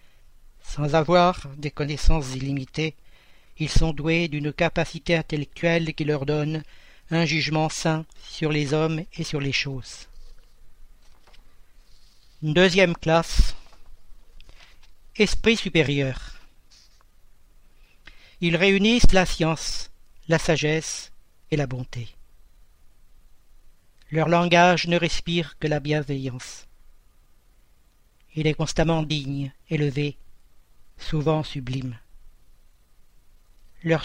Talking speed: 90 wpm